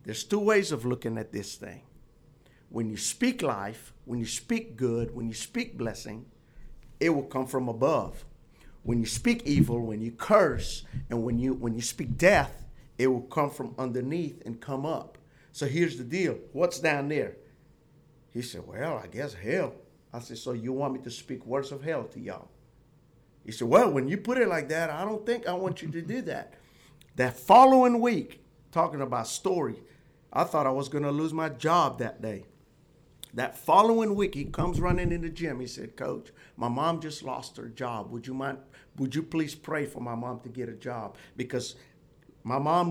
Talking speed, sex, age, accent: 200 wpm, male, 50-69, American